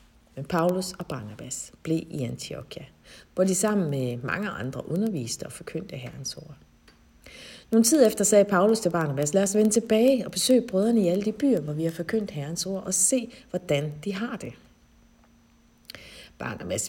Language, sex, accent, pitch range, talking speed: Danish, female, native, 145-210 Hz, 175 wpm